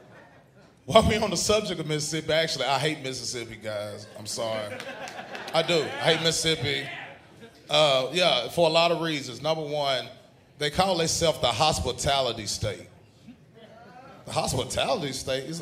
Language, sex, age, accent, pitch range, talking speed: English, male, 30-49, American, 180-275 Hz, 145 wpm